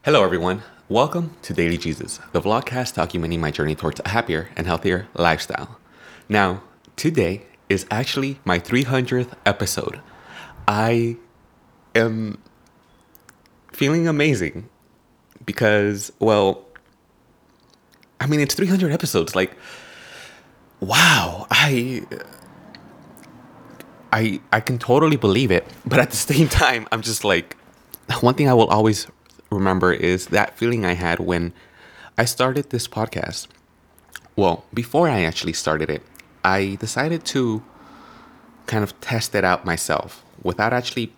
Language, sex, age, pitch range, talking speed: English, male, 20-39, 90-125 Hz, 125 wpm